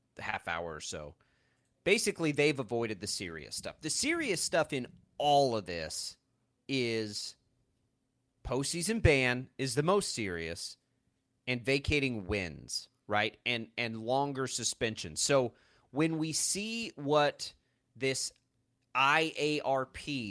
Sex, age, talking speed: male, 30-49, 120 wpm